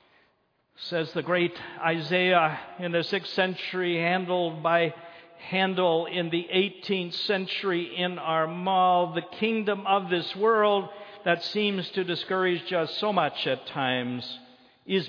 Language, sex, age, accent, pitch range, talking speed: English, male, 50-69, American, 155-200 Hz, 130 wpm